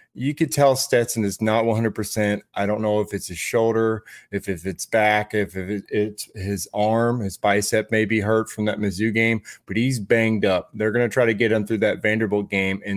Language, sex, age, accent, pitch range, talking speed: English, male, 30-49, American, 100-115 Hz, 220 wpm